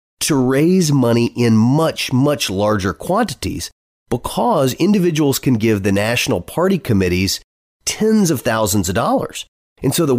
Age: 30-49